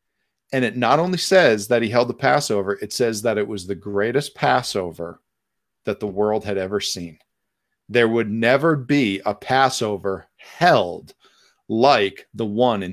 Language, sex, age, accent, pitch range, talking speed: English, male, 40-59, American, 105-140 Hz, 160 wpm